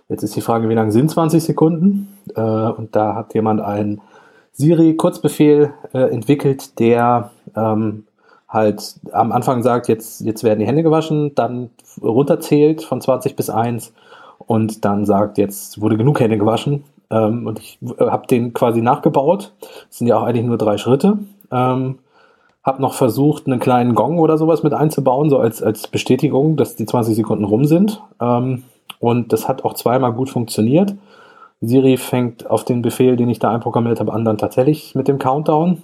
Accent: German